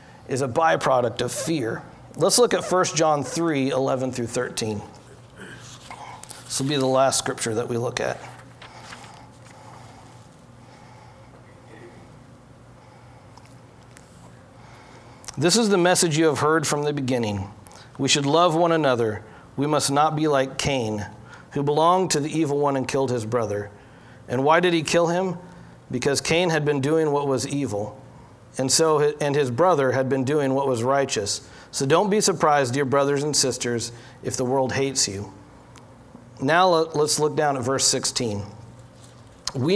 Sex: male